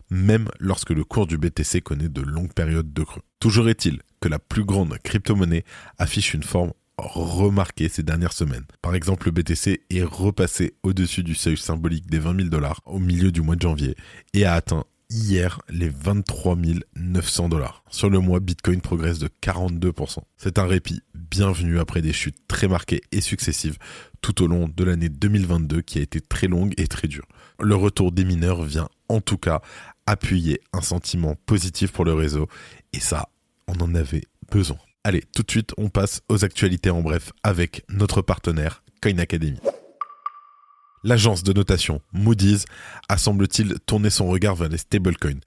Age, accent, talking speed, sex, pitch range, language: 20-39, French, 175 wpm, male, 80-100 Hz, French